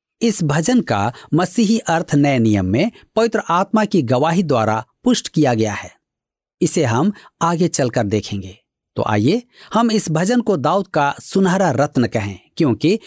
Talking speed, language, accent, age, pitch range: 155 wpm, Hindi, native, 50-69, 120-195 Hz